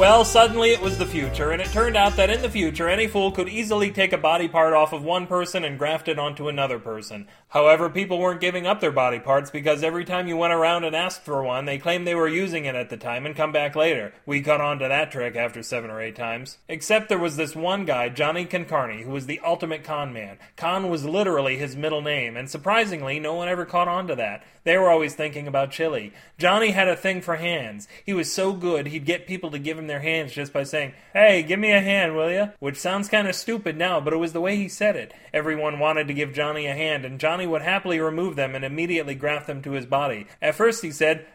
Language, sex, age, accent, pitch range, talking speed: English, male, 30-49, American, 145-185 Hz, 255 wpm